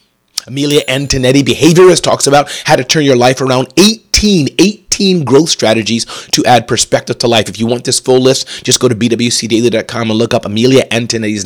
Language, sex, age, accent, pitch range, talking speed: English, male, 30-49, American, 110-145 Hz, 185 wpm